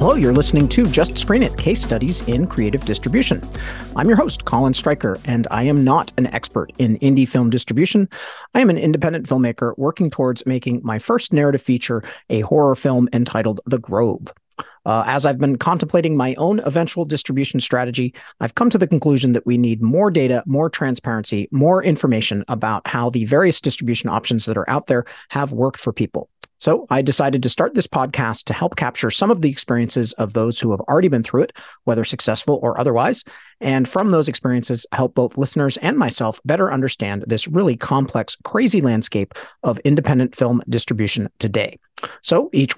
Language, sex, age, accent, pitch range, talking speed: English, male, 40-59, American, 115-150 Hz, 185 wpm